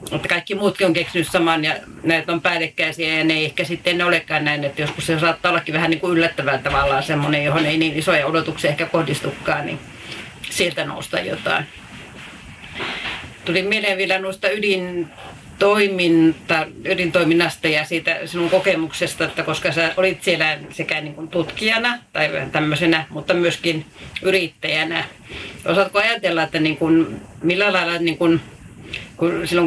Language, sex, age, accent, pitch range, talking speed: Finnish, female, 40-59, native, 160-180 Hz, 145 wpm